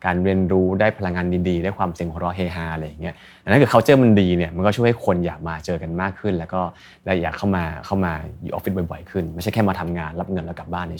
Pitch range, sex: 85-105 Hz, male